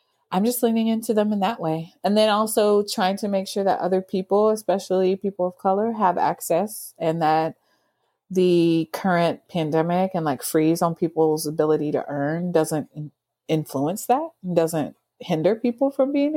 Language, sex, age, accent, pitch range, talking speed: English, female, 30-49, American, 165-210 Hz, 165 wpm